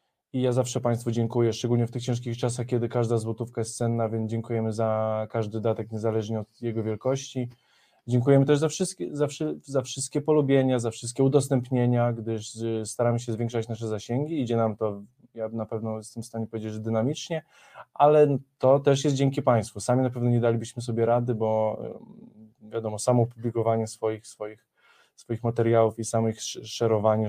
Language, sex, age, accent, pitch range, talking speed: Polish, male, 20-39, native, 110-130 Hz, 170 wpm